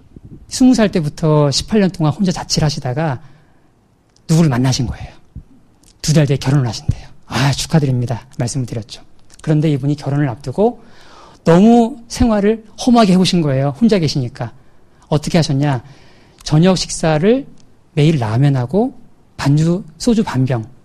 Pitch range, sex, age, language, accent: 135-185 Hz, male, 40-59, Korean, native